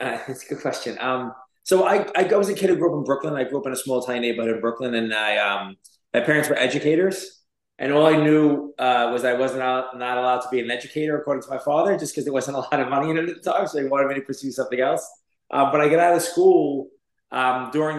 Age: 20-39